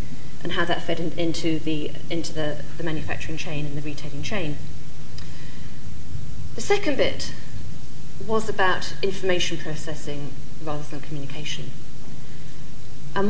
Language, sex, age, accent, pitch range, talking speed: English, female, 30-49, British, 150-185 Hz, 120 wpm